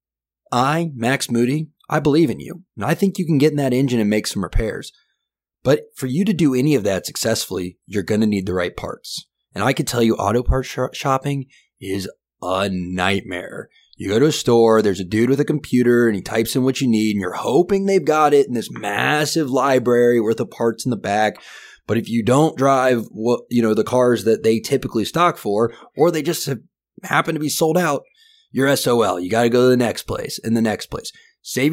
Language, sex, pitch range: English, male, 105-145 Hz